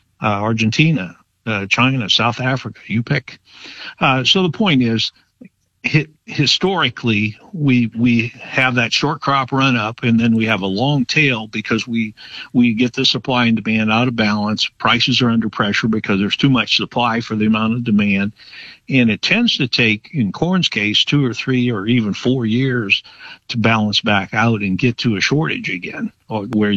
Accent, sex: American, male